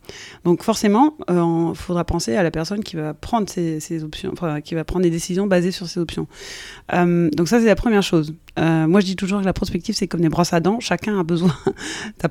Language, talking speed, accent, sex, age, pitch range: French, 250 wpm, French, female, 20-39, 170-205 Hz